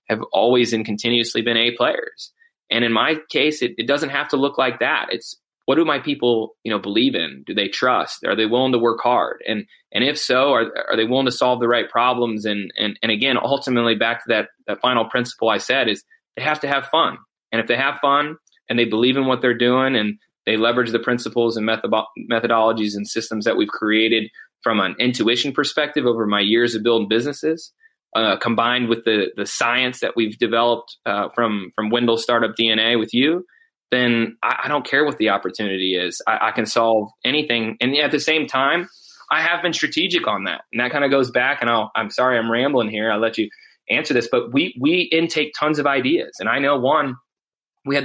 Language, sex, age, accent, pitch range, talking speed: English, male, 20-39, American, 115-145 Hz, 220 wpm